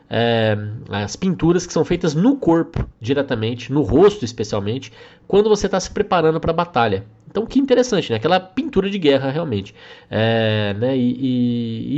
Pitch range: 105-150 Hz